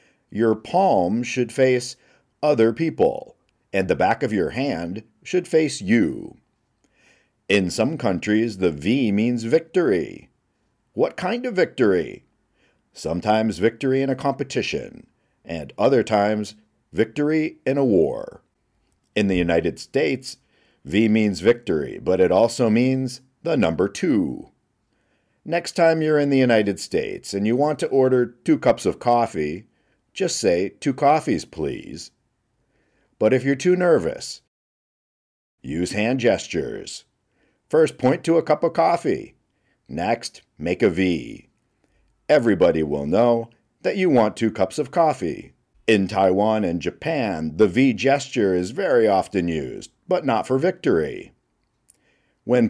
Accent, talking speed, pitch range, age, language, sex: American, 135 wpm, 105-135 Hz, 50-69, English, male